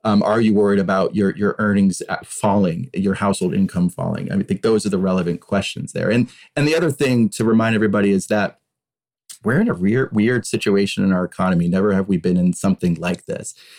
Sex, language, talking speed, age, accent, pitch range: male, English, 220 wpm, 30-49, American, 95-115 Hz